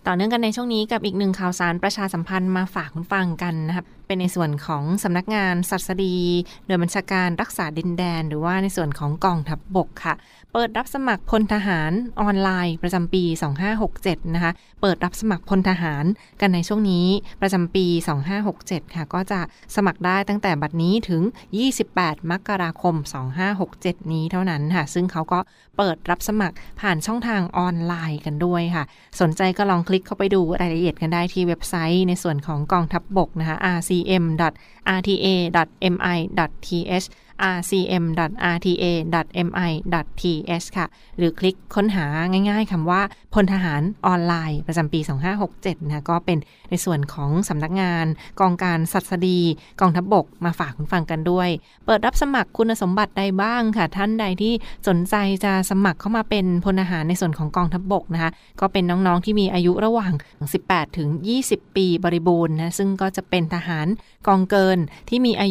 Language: Thai